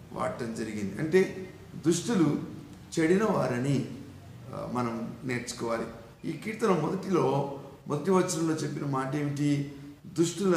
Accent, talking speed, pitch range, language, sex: native, 90 wpm, 125-165 Hz, Telugu, male